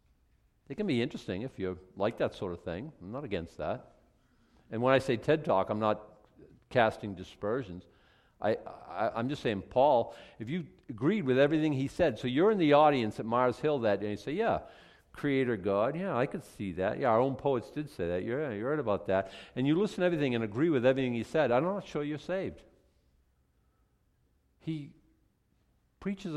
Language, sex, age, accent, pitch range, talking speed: English, male, 50-69, American, 105-150 Hz, 205 wpm